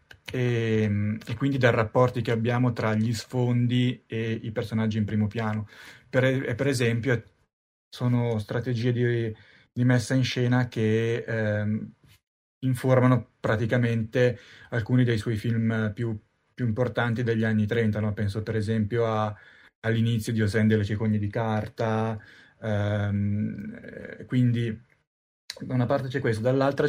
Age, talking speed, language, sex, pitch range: 20-39, 135 wpm, Italian, male, 110-125 Hz